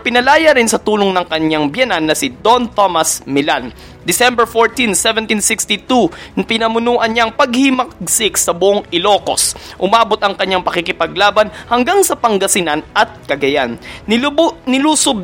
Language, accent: Filipino, native